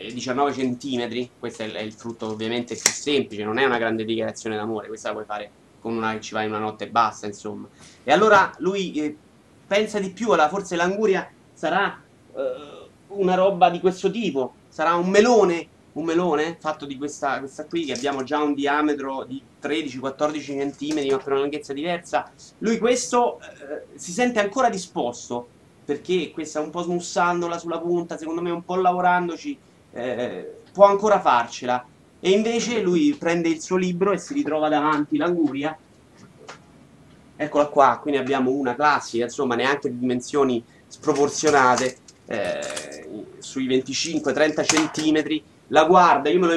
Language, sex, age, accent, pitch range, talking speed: Italian, male, 30-49, native, 125-175 Hz, 165 wpm